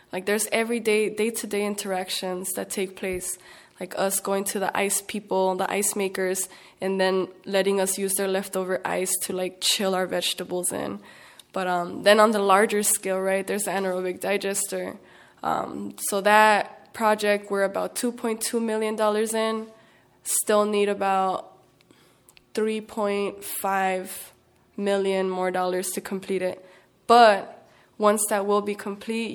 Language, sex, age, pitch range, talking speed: English, female, 20-39, 190-205 Hz, 140 wpm